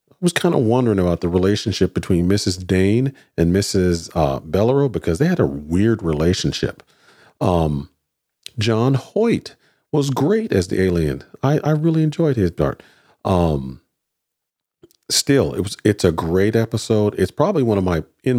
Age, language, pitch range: 40-59, English, 95-125 Hz